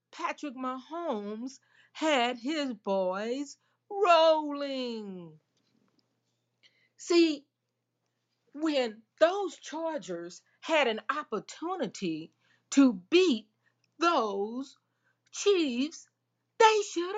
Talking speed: 65 wpm